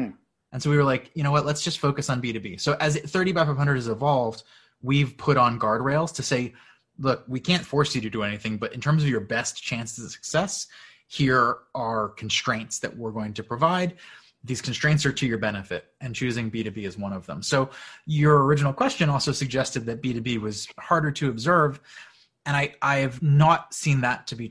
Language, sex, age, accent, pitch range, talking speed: English, male, 20-39, American, 115-145 Hz, 210 wpm